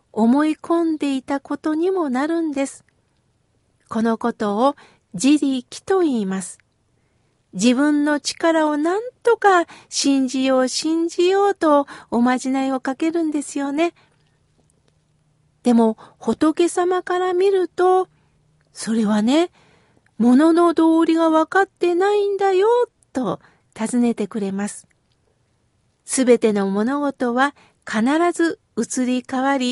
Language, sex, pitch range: Japanese, female, 230-335 Hz